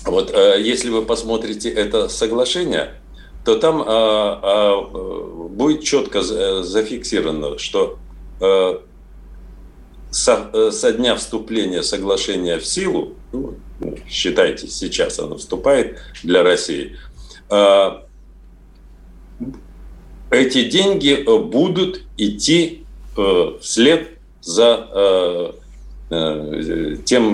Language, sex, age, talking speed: Russian, male, 40-59, 70 wpm